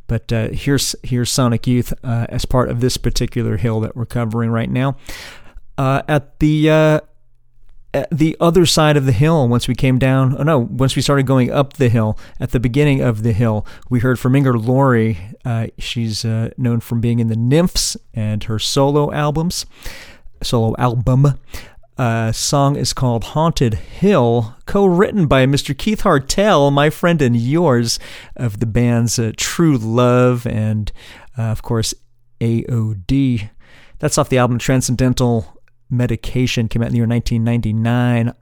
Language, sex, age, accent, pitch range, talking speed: English, male, 40-59, American, 120-140 Hz, 170 wpm